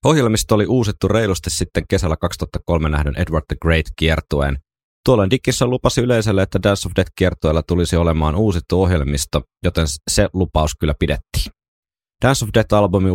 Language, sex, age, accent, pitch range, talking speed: Finnish, male, 30-49, native, 75-95 Hz, 150 wpm